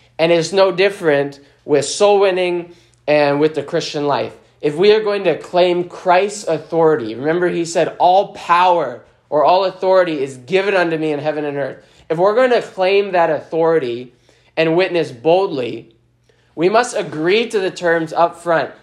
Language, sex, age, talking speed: English, male, 20-39, 170 wpm